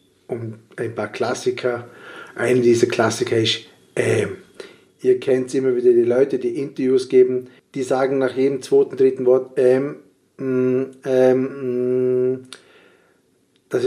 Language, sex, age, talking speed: German, male, 50-69, 125 wpm